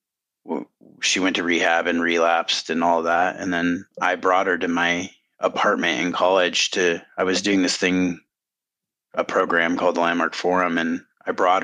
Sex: male